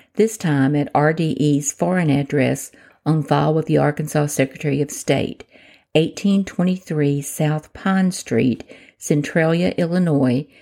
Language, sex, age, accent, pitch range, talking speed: English, female, 50-69, American, 145-180 Hz, 115 wpm